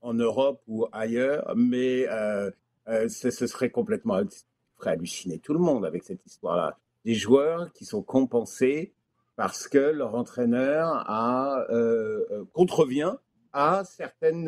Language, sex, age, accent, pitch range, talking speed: French, male, 50-69, French, 125-200 Hz, 140 wpm